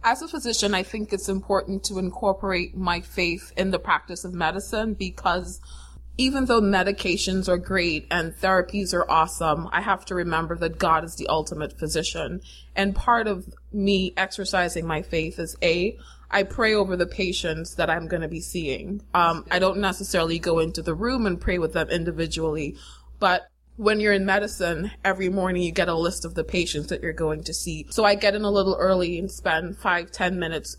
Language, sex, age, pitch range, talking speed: English, female, 20-39, 170-200 Hz, 195 wpm